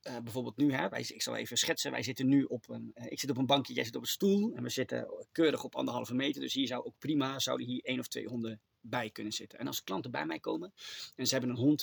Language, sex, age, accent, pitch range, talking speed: Dutch, male, 30-49, Dutch, 135-205 Hz, 290 wpm